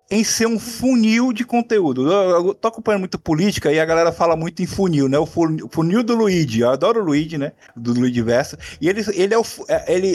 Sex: male